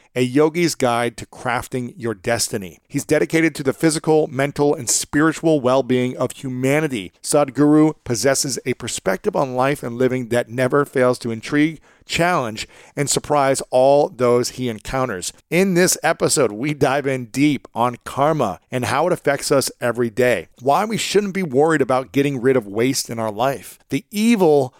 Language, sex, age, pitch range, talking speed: English, male, 40-59, 120-150 Hz, 165 wpm